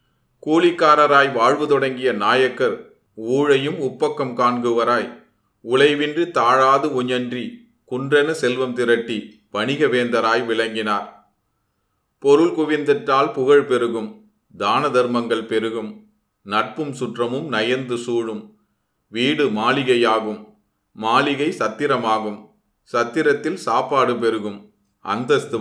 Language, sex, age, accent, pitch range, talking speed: Tamil, male, 40-59, native, 110-135 Hz, 80 wpm